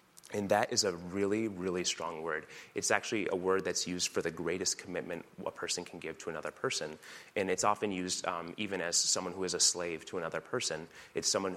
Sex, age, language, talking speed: male, 30-49, English, 220 wpm